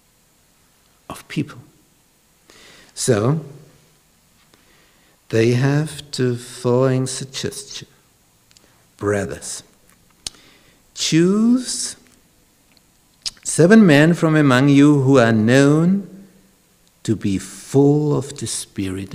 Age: 60-79